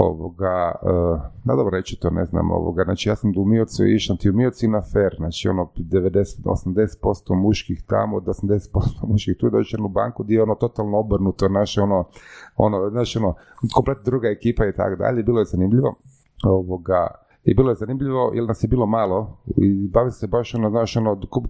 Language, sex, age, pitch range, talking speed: Croatian, male, 30-49, 100-125 Hz, 195 wpm